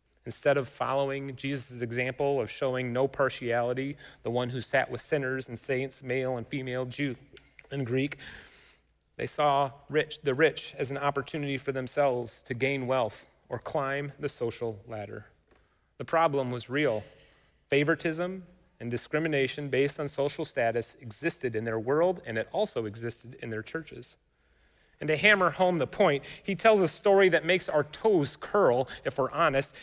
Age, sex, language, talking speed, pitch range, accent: 30-49, male, English, 160 wpm, 135-185 Hz, American